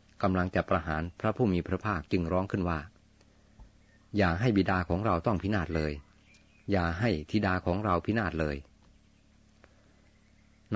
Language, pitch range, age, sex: Thai, 85-105 Hz, 30-49, male